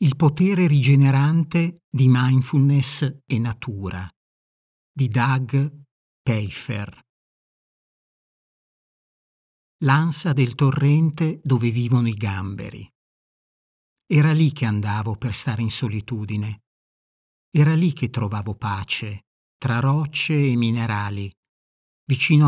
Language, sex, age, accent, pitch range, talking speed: Italian, male, 50-69, native, 115-145 Hz, 95 wpm